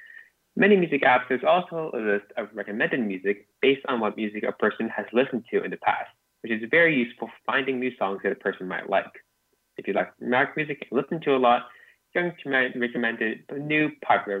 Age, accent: 20-39, American